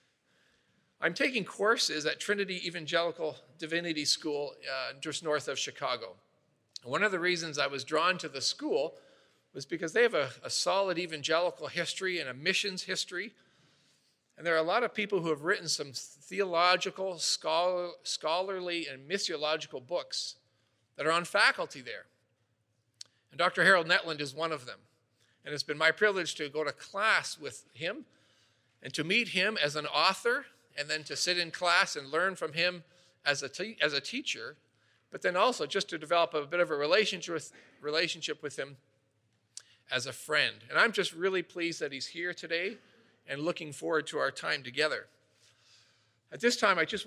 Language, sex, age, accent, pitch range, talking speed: English, male, 40-59, American, 145-185 Hz, 175 wpm